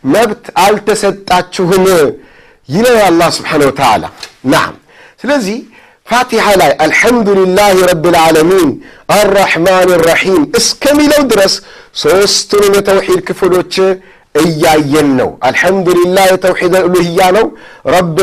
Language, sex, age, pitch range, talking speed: Amharic, male, 50-69, 160-200 Hz, 95 wpm